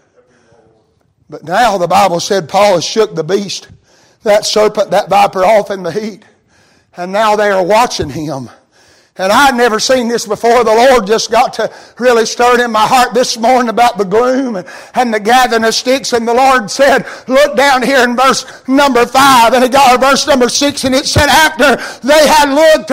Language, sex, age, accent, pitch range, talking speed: English, male, 60-79, American, 240-330 Hz, 200 wpm